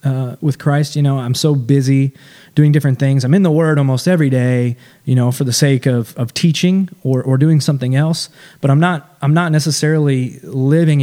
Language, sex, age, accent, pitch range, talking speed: English, male, 20-39, American, 125-150 Hz, 205 wpm